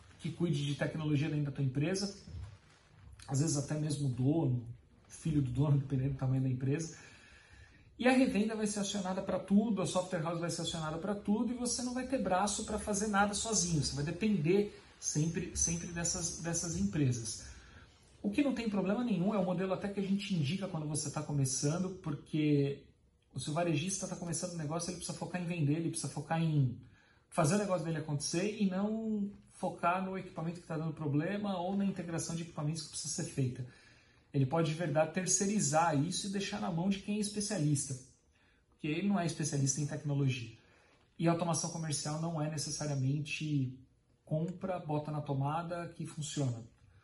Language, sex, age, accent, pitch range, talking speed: Portuguese, male, 40-59, Brazilian, 140-185 Hz, 190 wpm